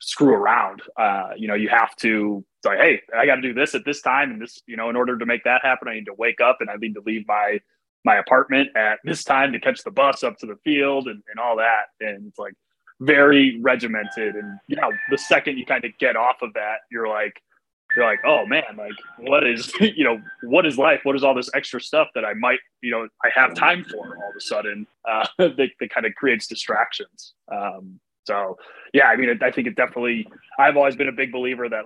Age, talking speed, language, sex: 20-39, 240 wpm, English, male